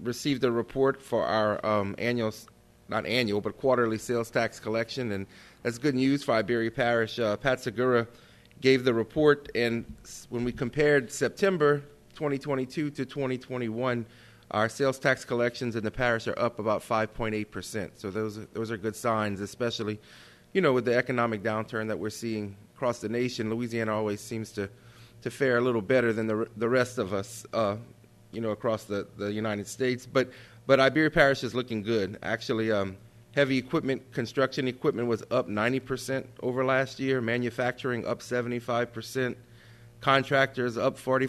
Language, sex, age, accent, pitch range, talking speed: English, male, 30-49, American, 110-130 Hz, 165 wpm